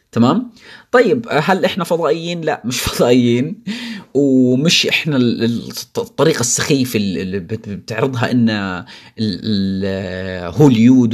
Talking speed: 85 wpm